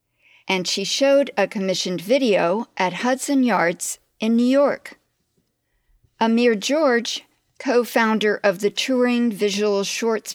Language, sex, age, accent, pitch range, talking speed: English, female, 50-69, American, 185-245 Hz, 115 wpm